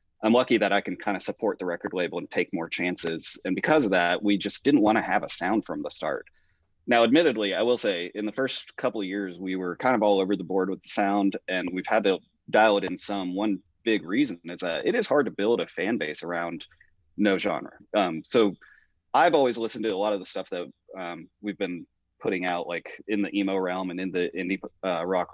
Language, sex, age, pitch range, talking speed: English, male, 30-49, 90-100 Hz, 245 wpm